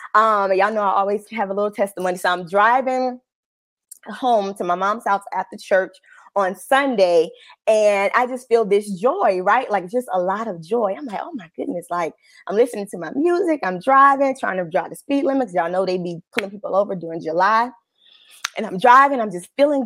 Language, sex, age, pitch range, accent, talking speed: English, female, 20-39, 195-255 Hz, American, 205 wpm